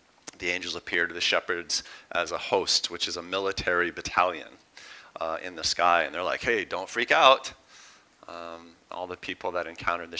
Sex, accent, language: male, American, English